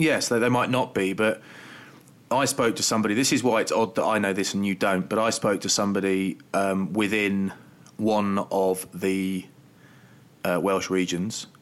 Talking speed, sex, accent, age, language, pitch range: 180 wpm, male, British, 20-39, English, 95-105 Hz